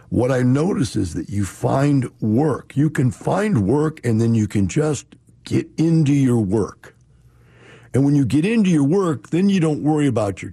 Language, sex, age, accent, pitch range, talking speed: English, male, 60-79, American, 95-130 Hz, 195 wpm